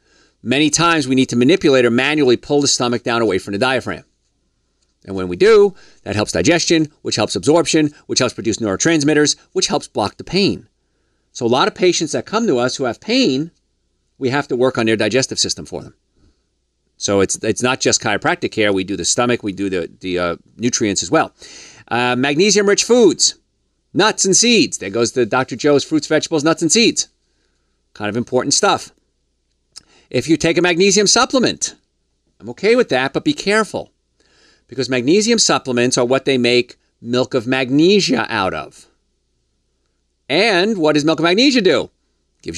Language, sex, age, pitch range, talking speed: English, male, 40-59, 110-165 Hz, 185 wpm